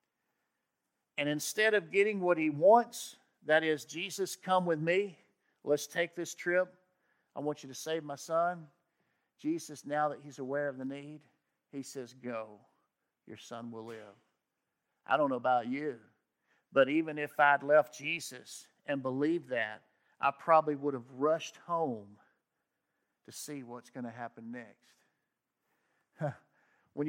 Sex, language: male, English